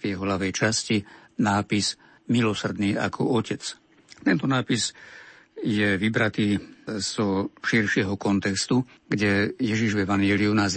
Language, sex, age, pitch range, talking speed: Slovak, male, 60-79, 100-115 Hz, 115 wpm